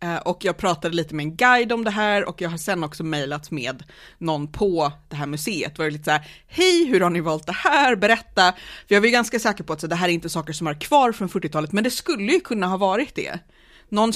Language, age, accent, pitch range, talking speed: Swedish, 30-49, native, 165-215 Hz, 265 wpm